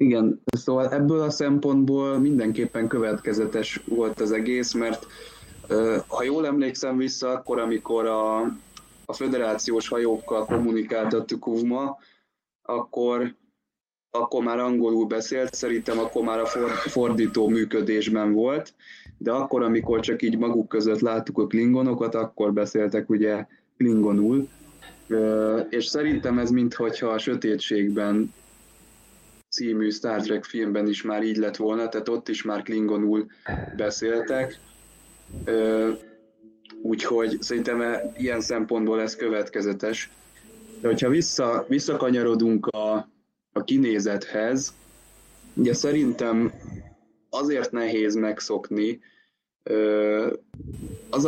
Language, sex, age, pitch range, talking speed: Hungarian, male, 20-39, 110-120 Hz, 105 wpm